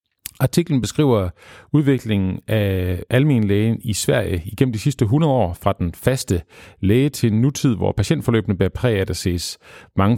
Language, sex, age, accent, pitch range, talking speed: Danish, male, 40-59, native, 95-130 Hz, 155 wpm